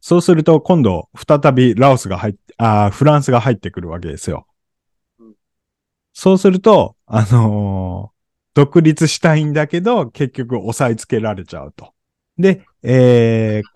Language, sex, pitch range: Japanese, male, 95-145 Hz